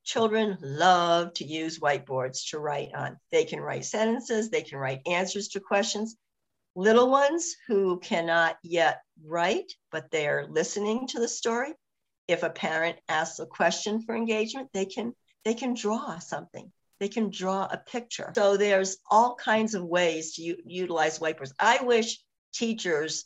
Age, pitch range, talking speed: 60-79, 160-220 Hz, 165 wpm